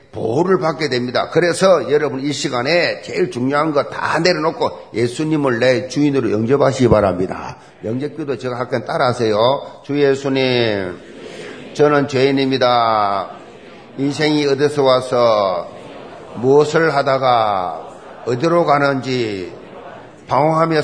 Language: Korean